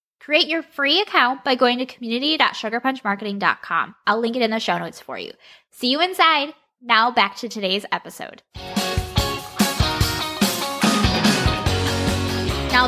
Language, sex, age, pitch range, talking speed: English, female, 10-29, 200-260 Hz, 120 wpm